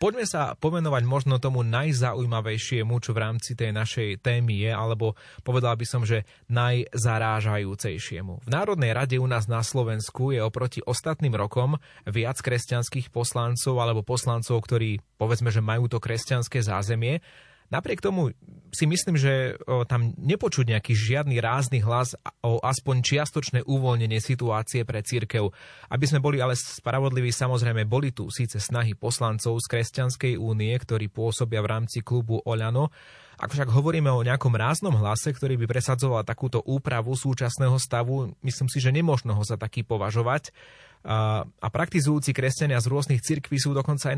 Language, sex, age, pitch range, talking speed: Slovak, male, 30-49, 115-135 Hz, 150 wpm